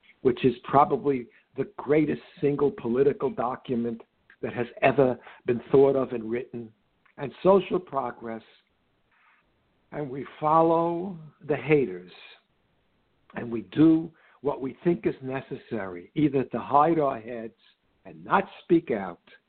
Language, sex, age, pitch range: English, male, 60-79, 120-165 Hz